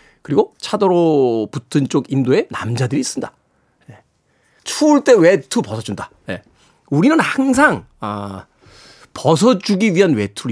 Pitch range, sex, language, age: 130-200 Hz, male, Korean, 40-59